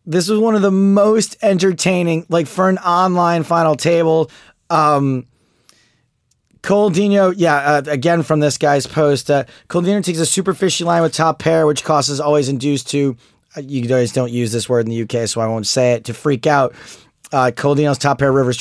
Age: 30-49